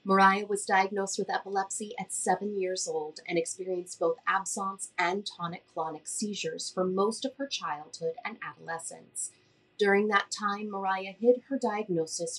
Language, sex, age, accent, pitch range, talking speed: English, female, 30-49, American, 175-235 Hz, 145 wpm